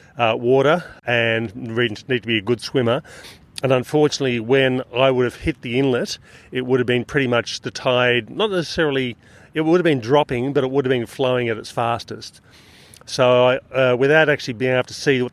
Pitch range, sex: 115-140 Hz, male